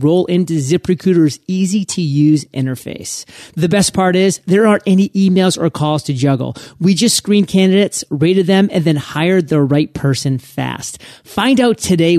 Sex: male